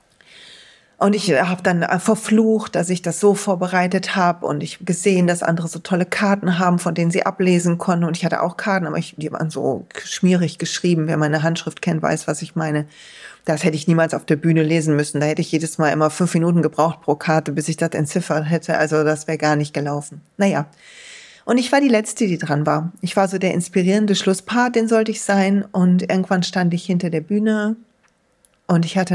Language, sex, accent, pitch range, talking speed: German, female, German, 165-205 Hz, 215 wpm